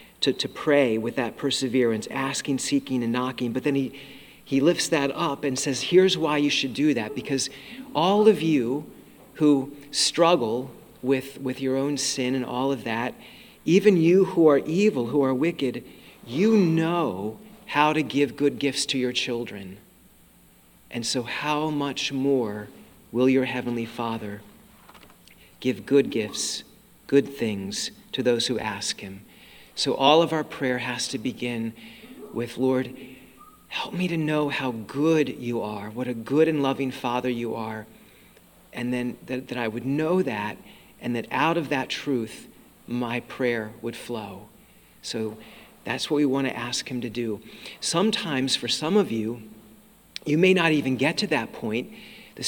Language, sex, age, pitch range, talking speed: English, male, 40-59, 120-150 Hz, 165 wpm